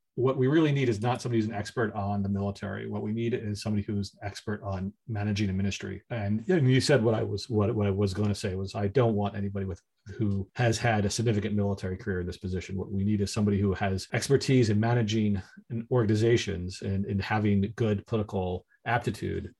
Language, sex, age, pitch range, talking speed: English, male, 40-59, 100-115 Hz, 215 wpm